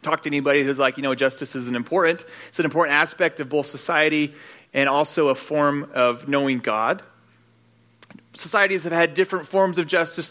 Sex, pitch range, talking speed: male, 150-170 Hz, 180 wpm